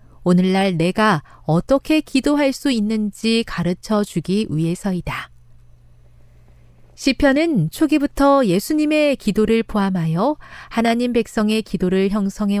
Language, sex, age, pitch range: Korean, female, 40-59, 165-260 Hz